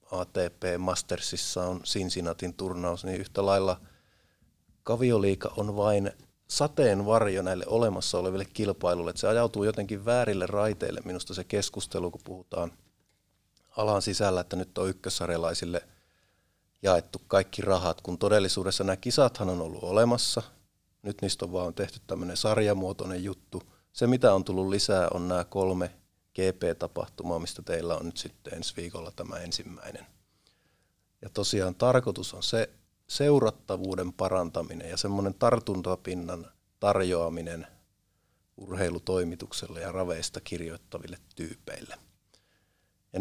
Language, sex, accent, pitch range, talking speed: Finnish, male, native, 90-105 Hz, 120 wpm